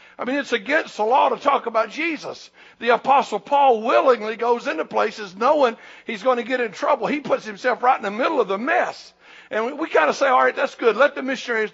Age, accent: 60-79, American